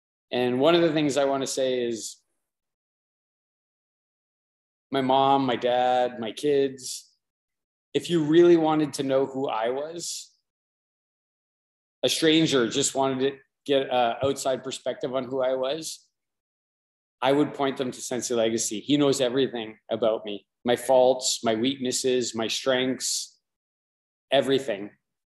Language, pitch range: English, 120-140 Hz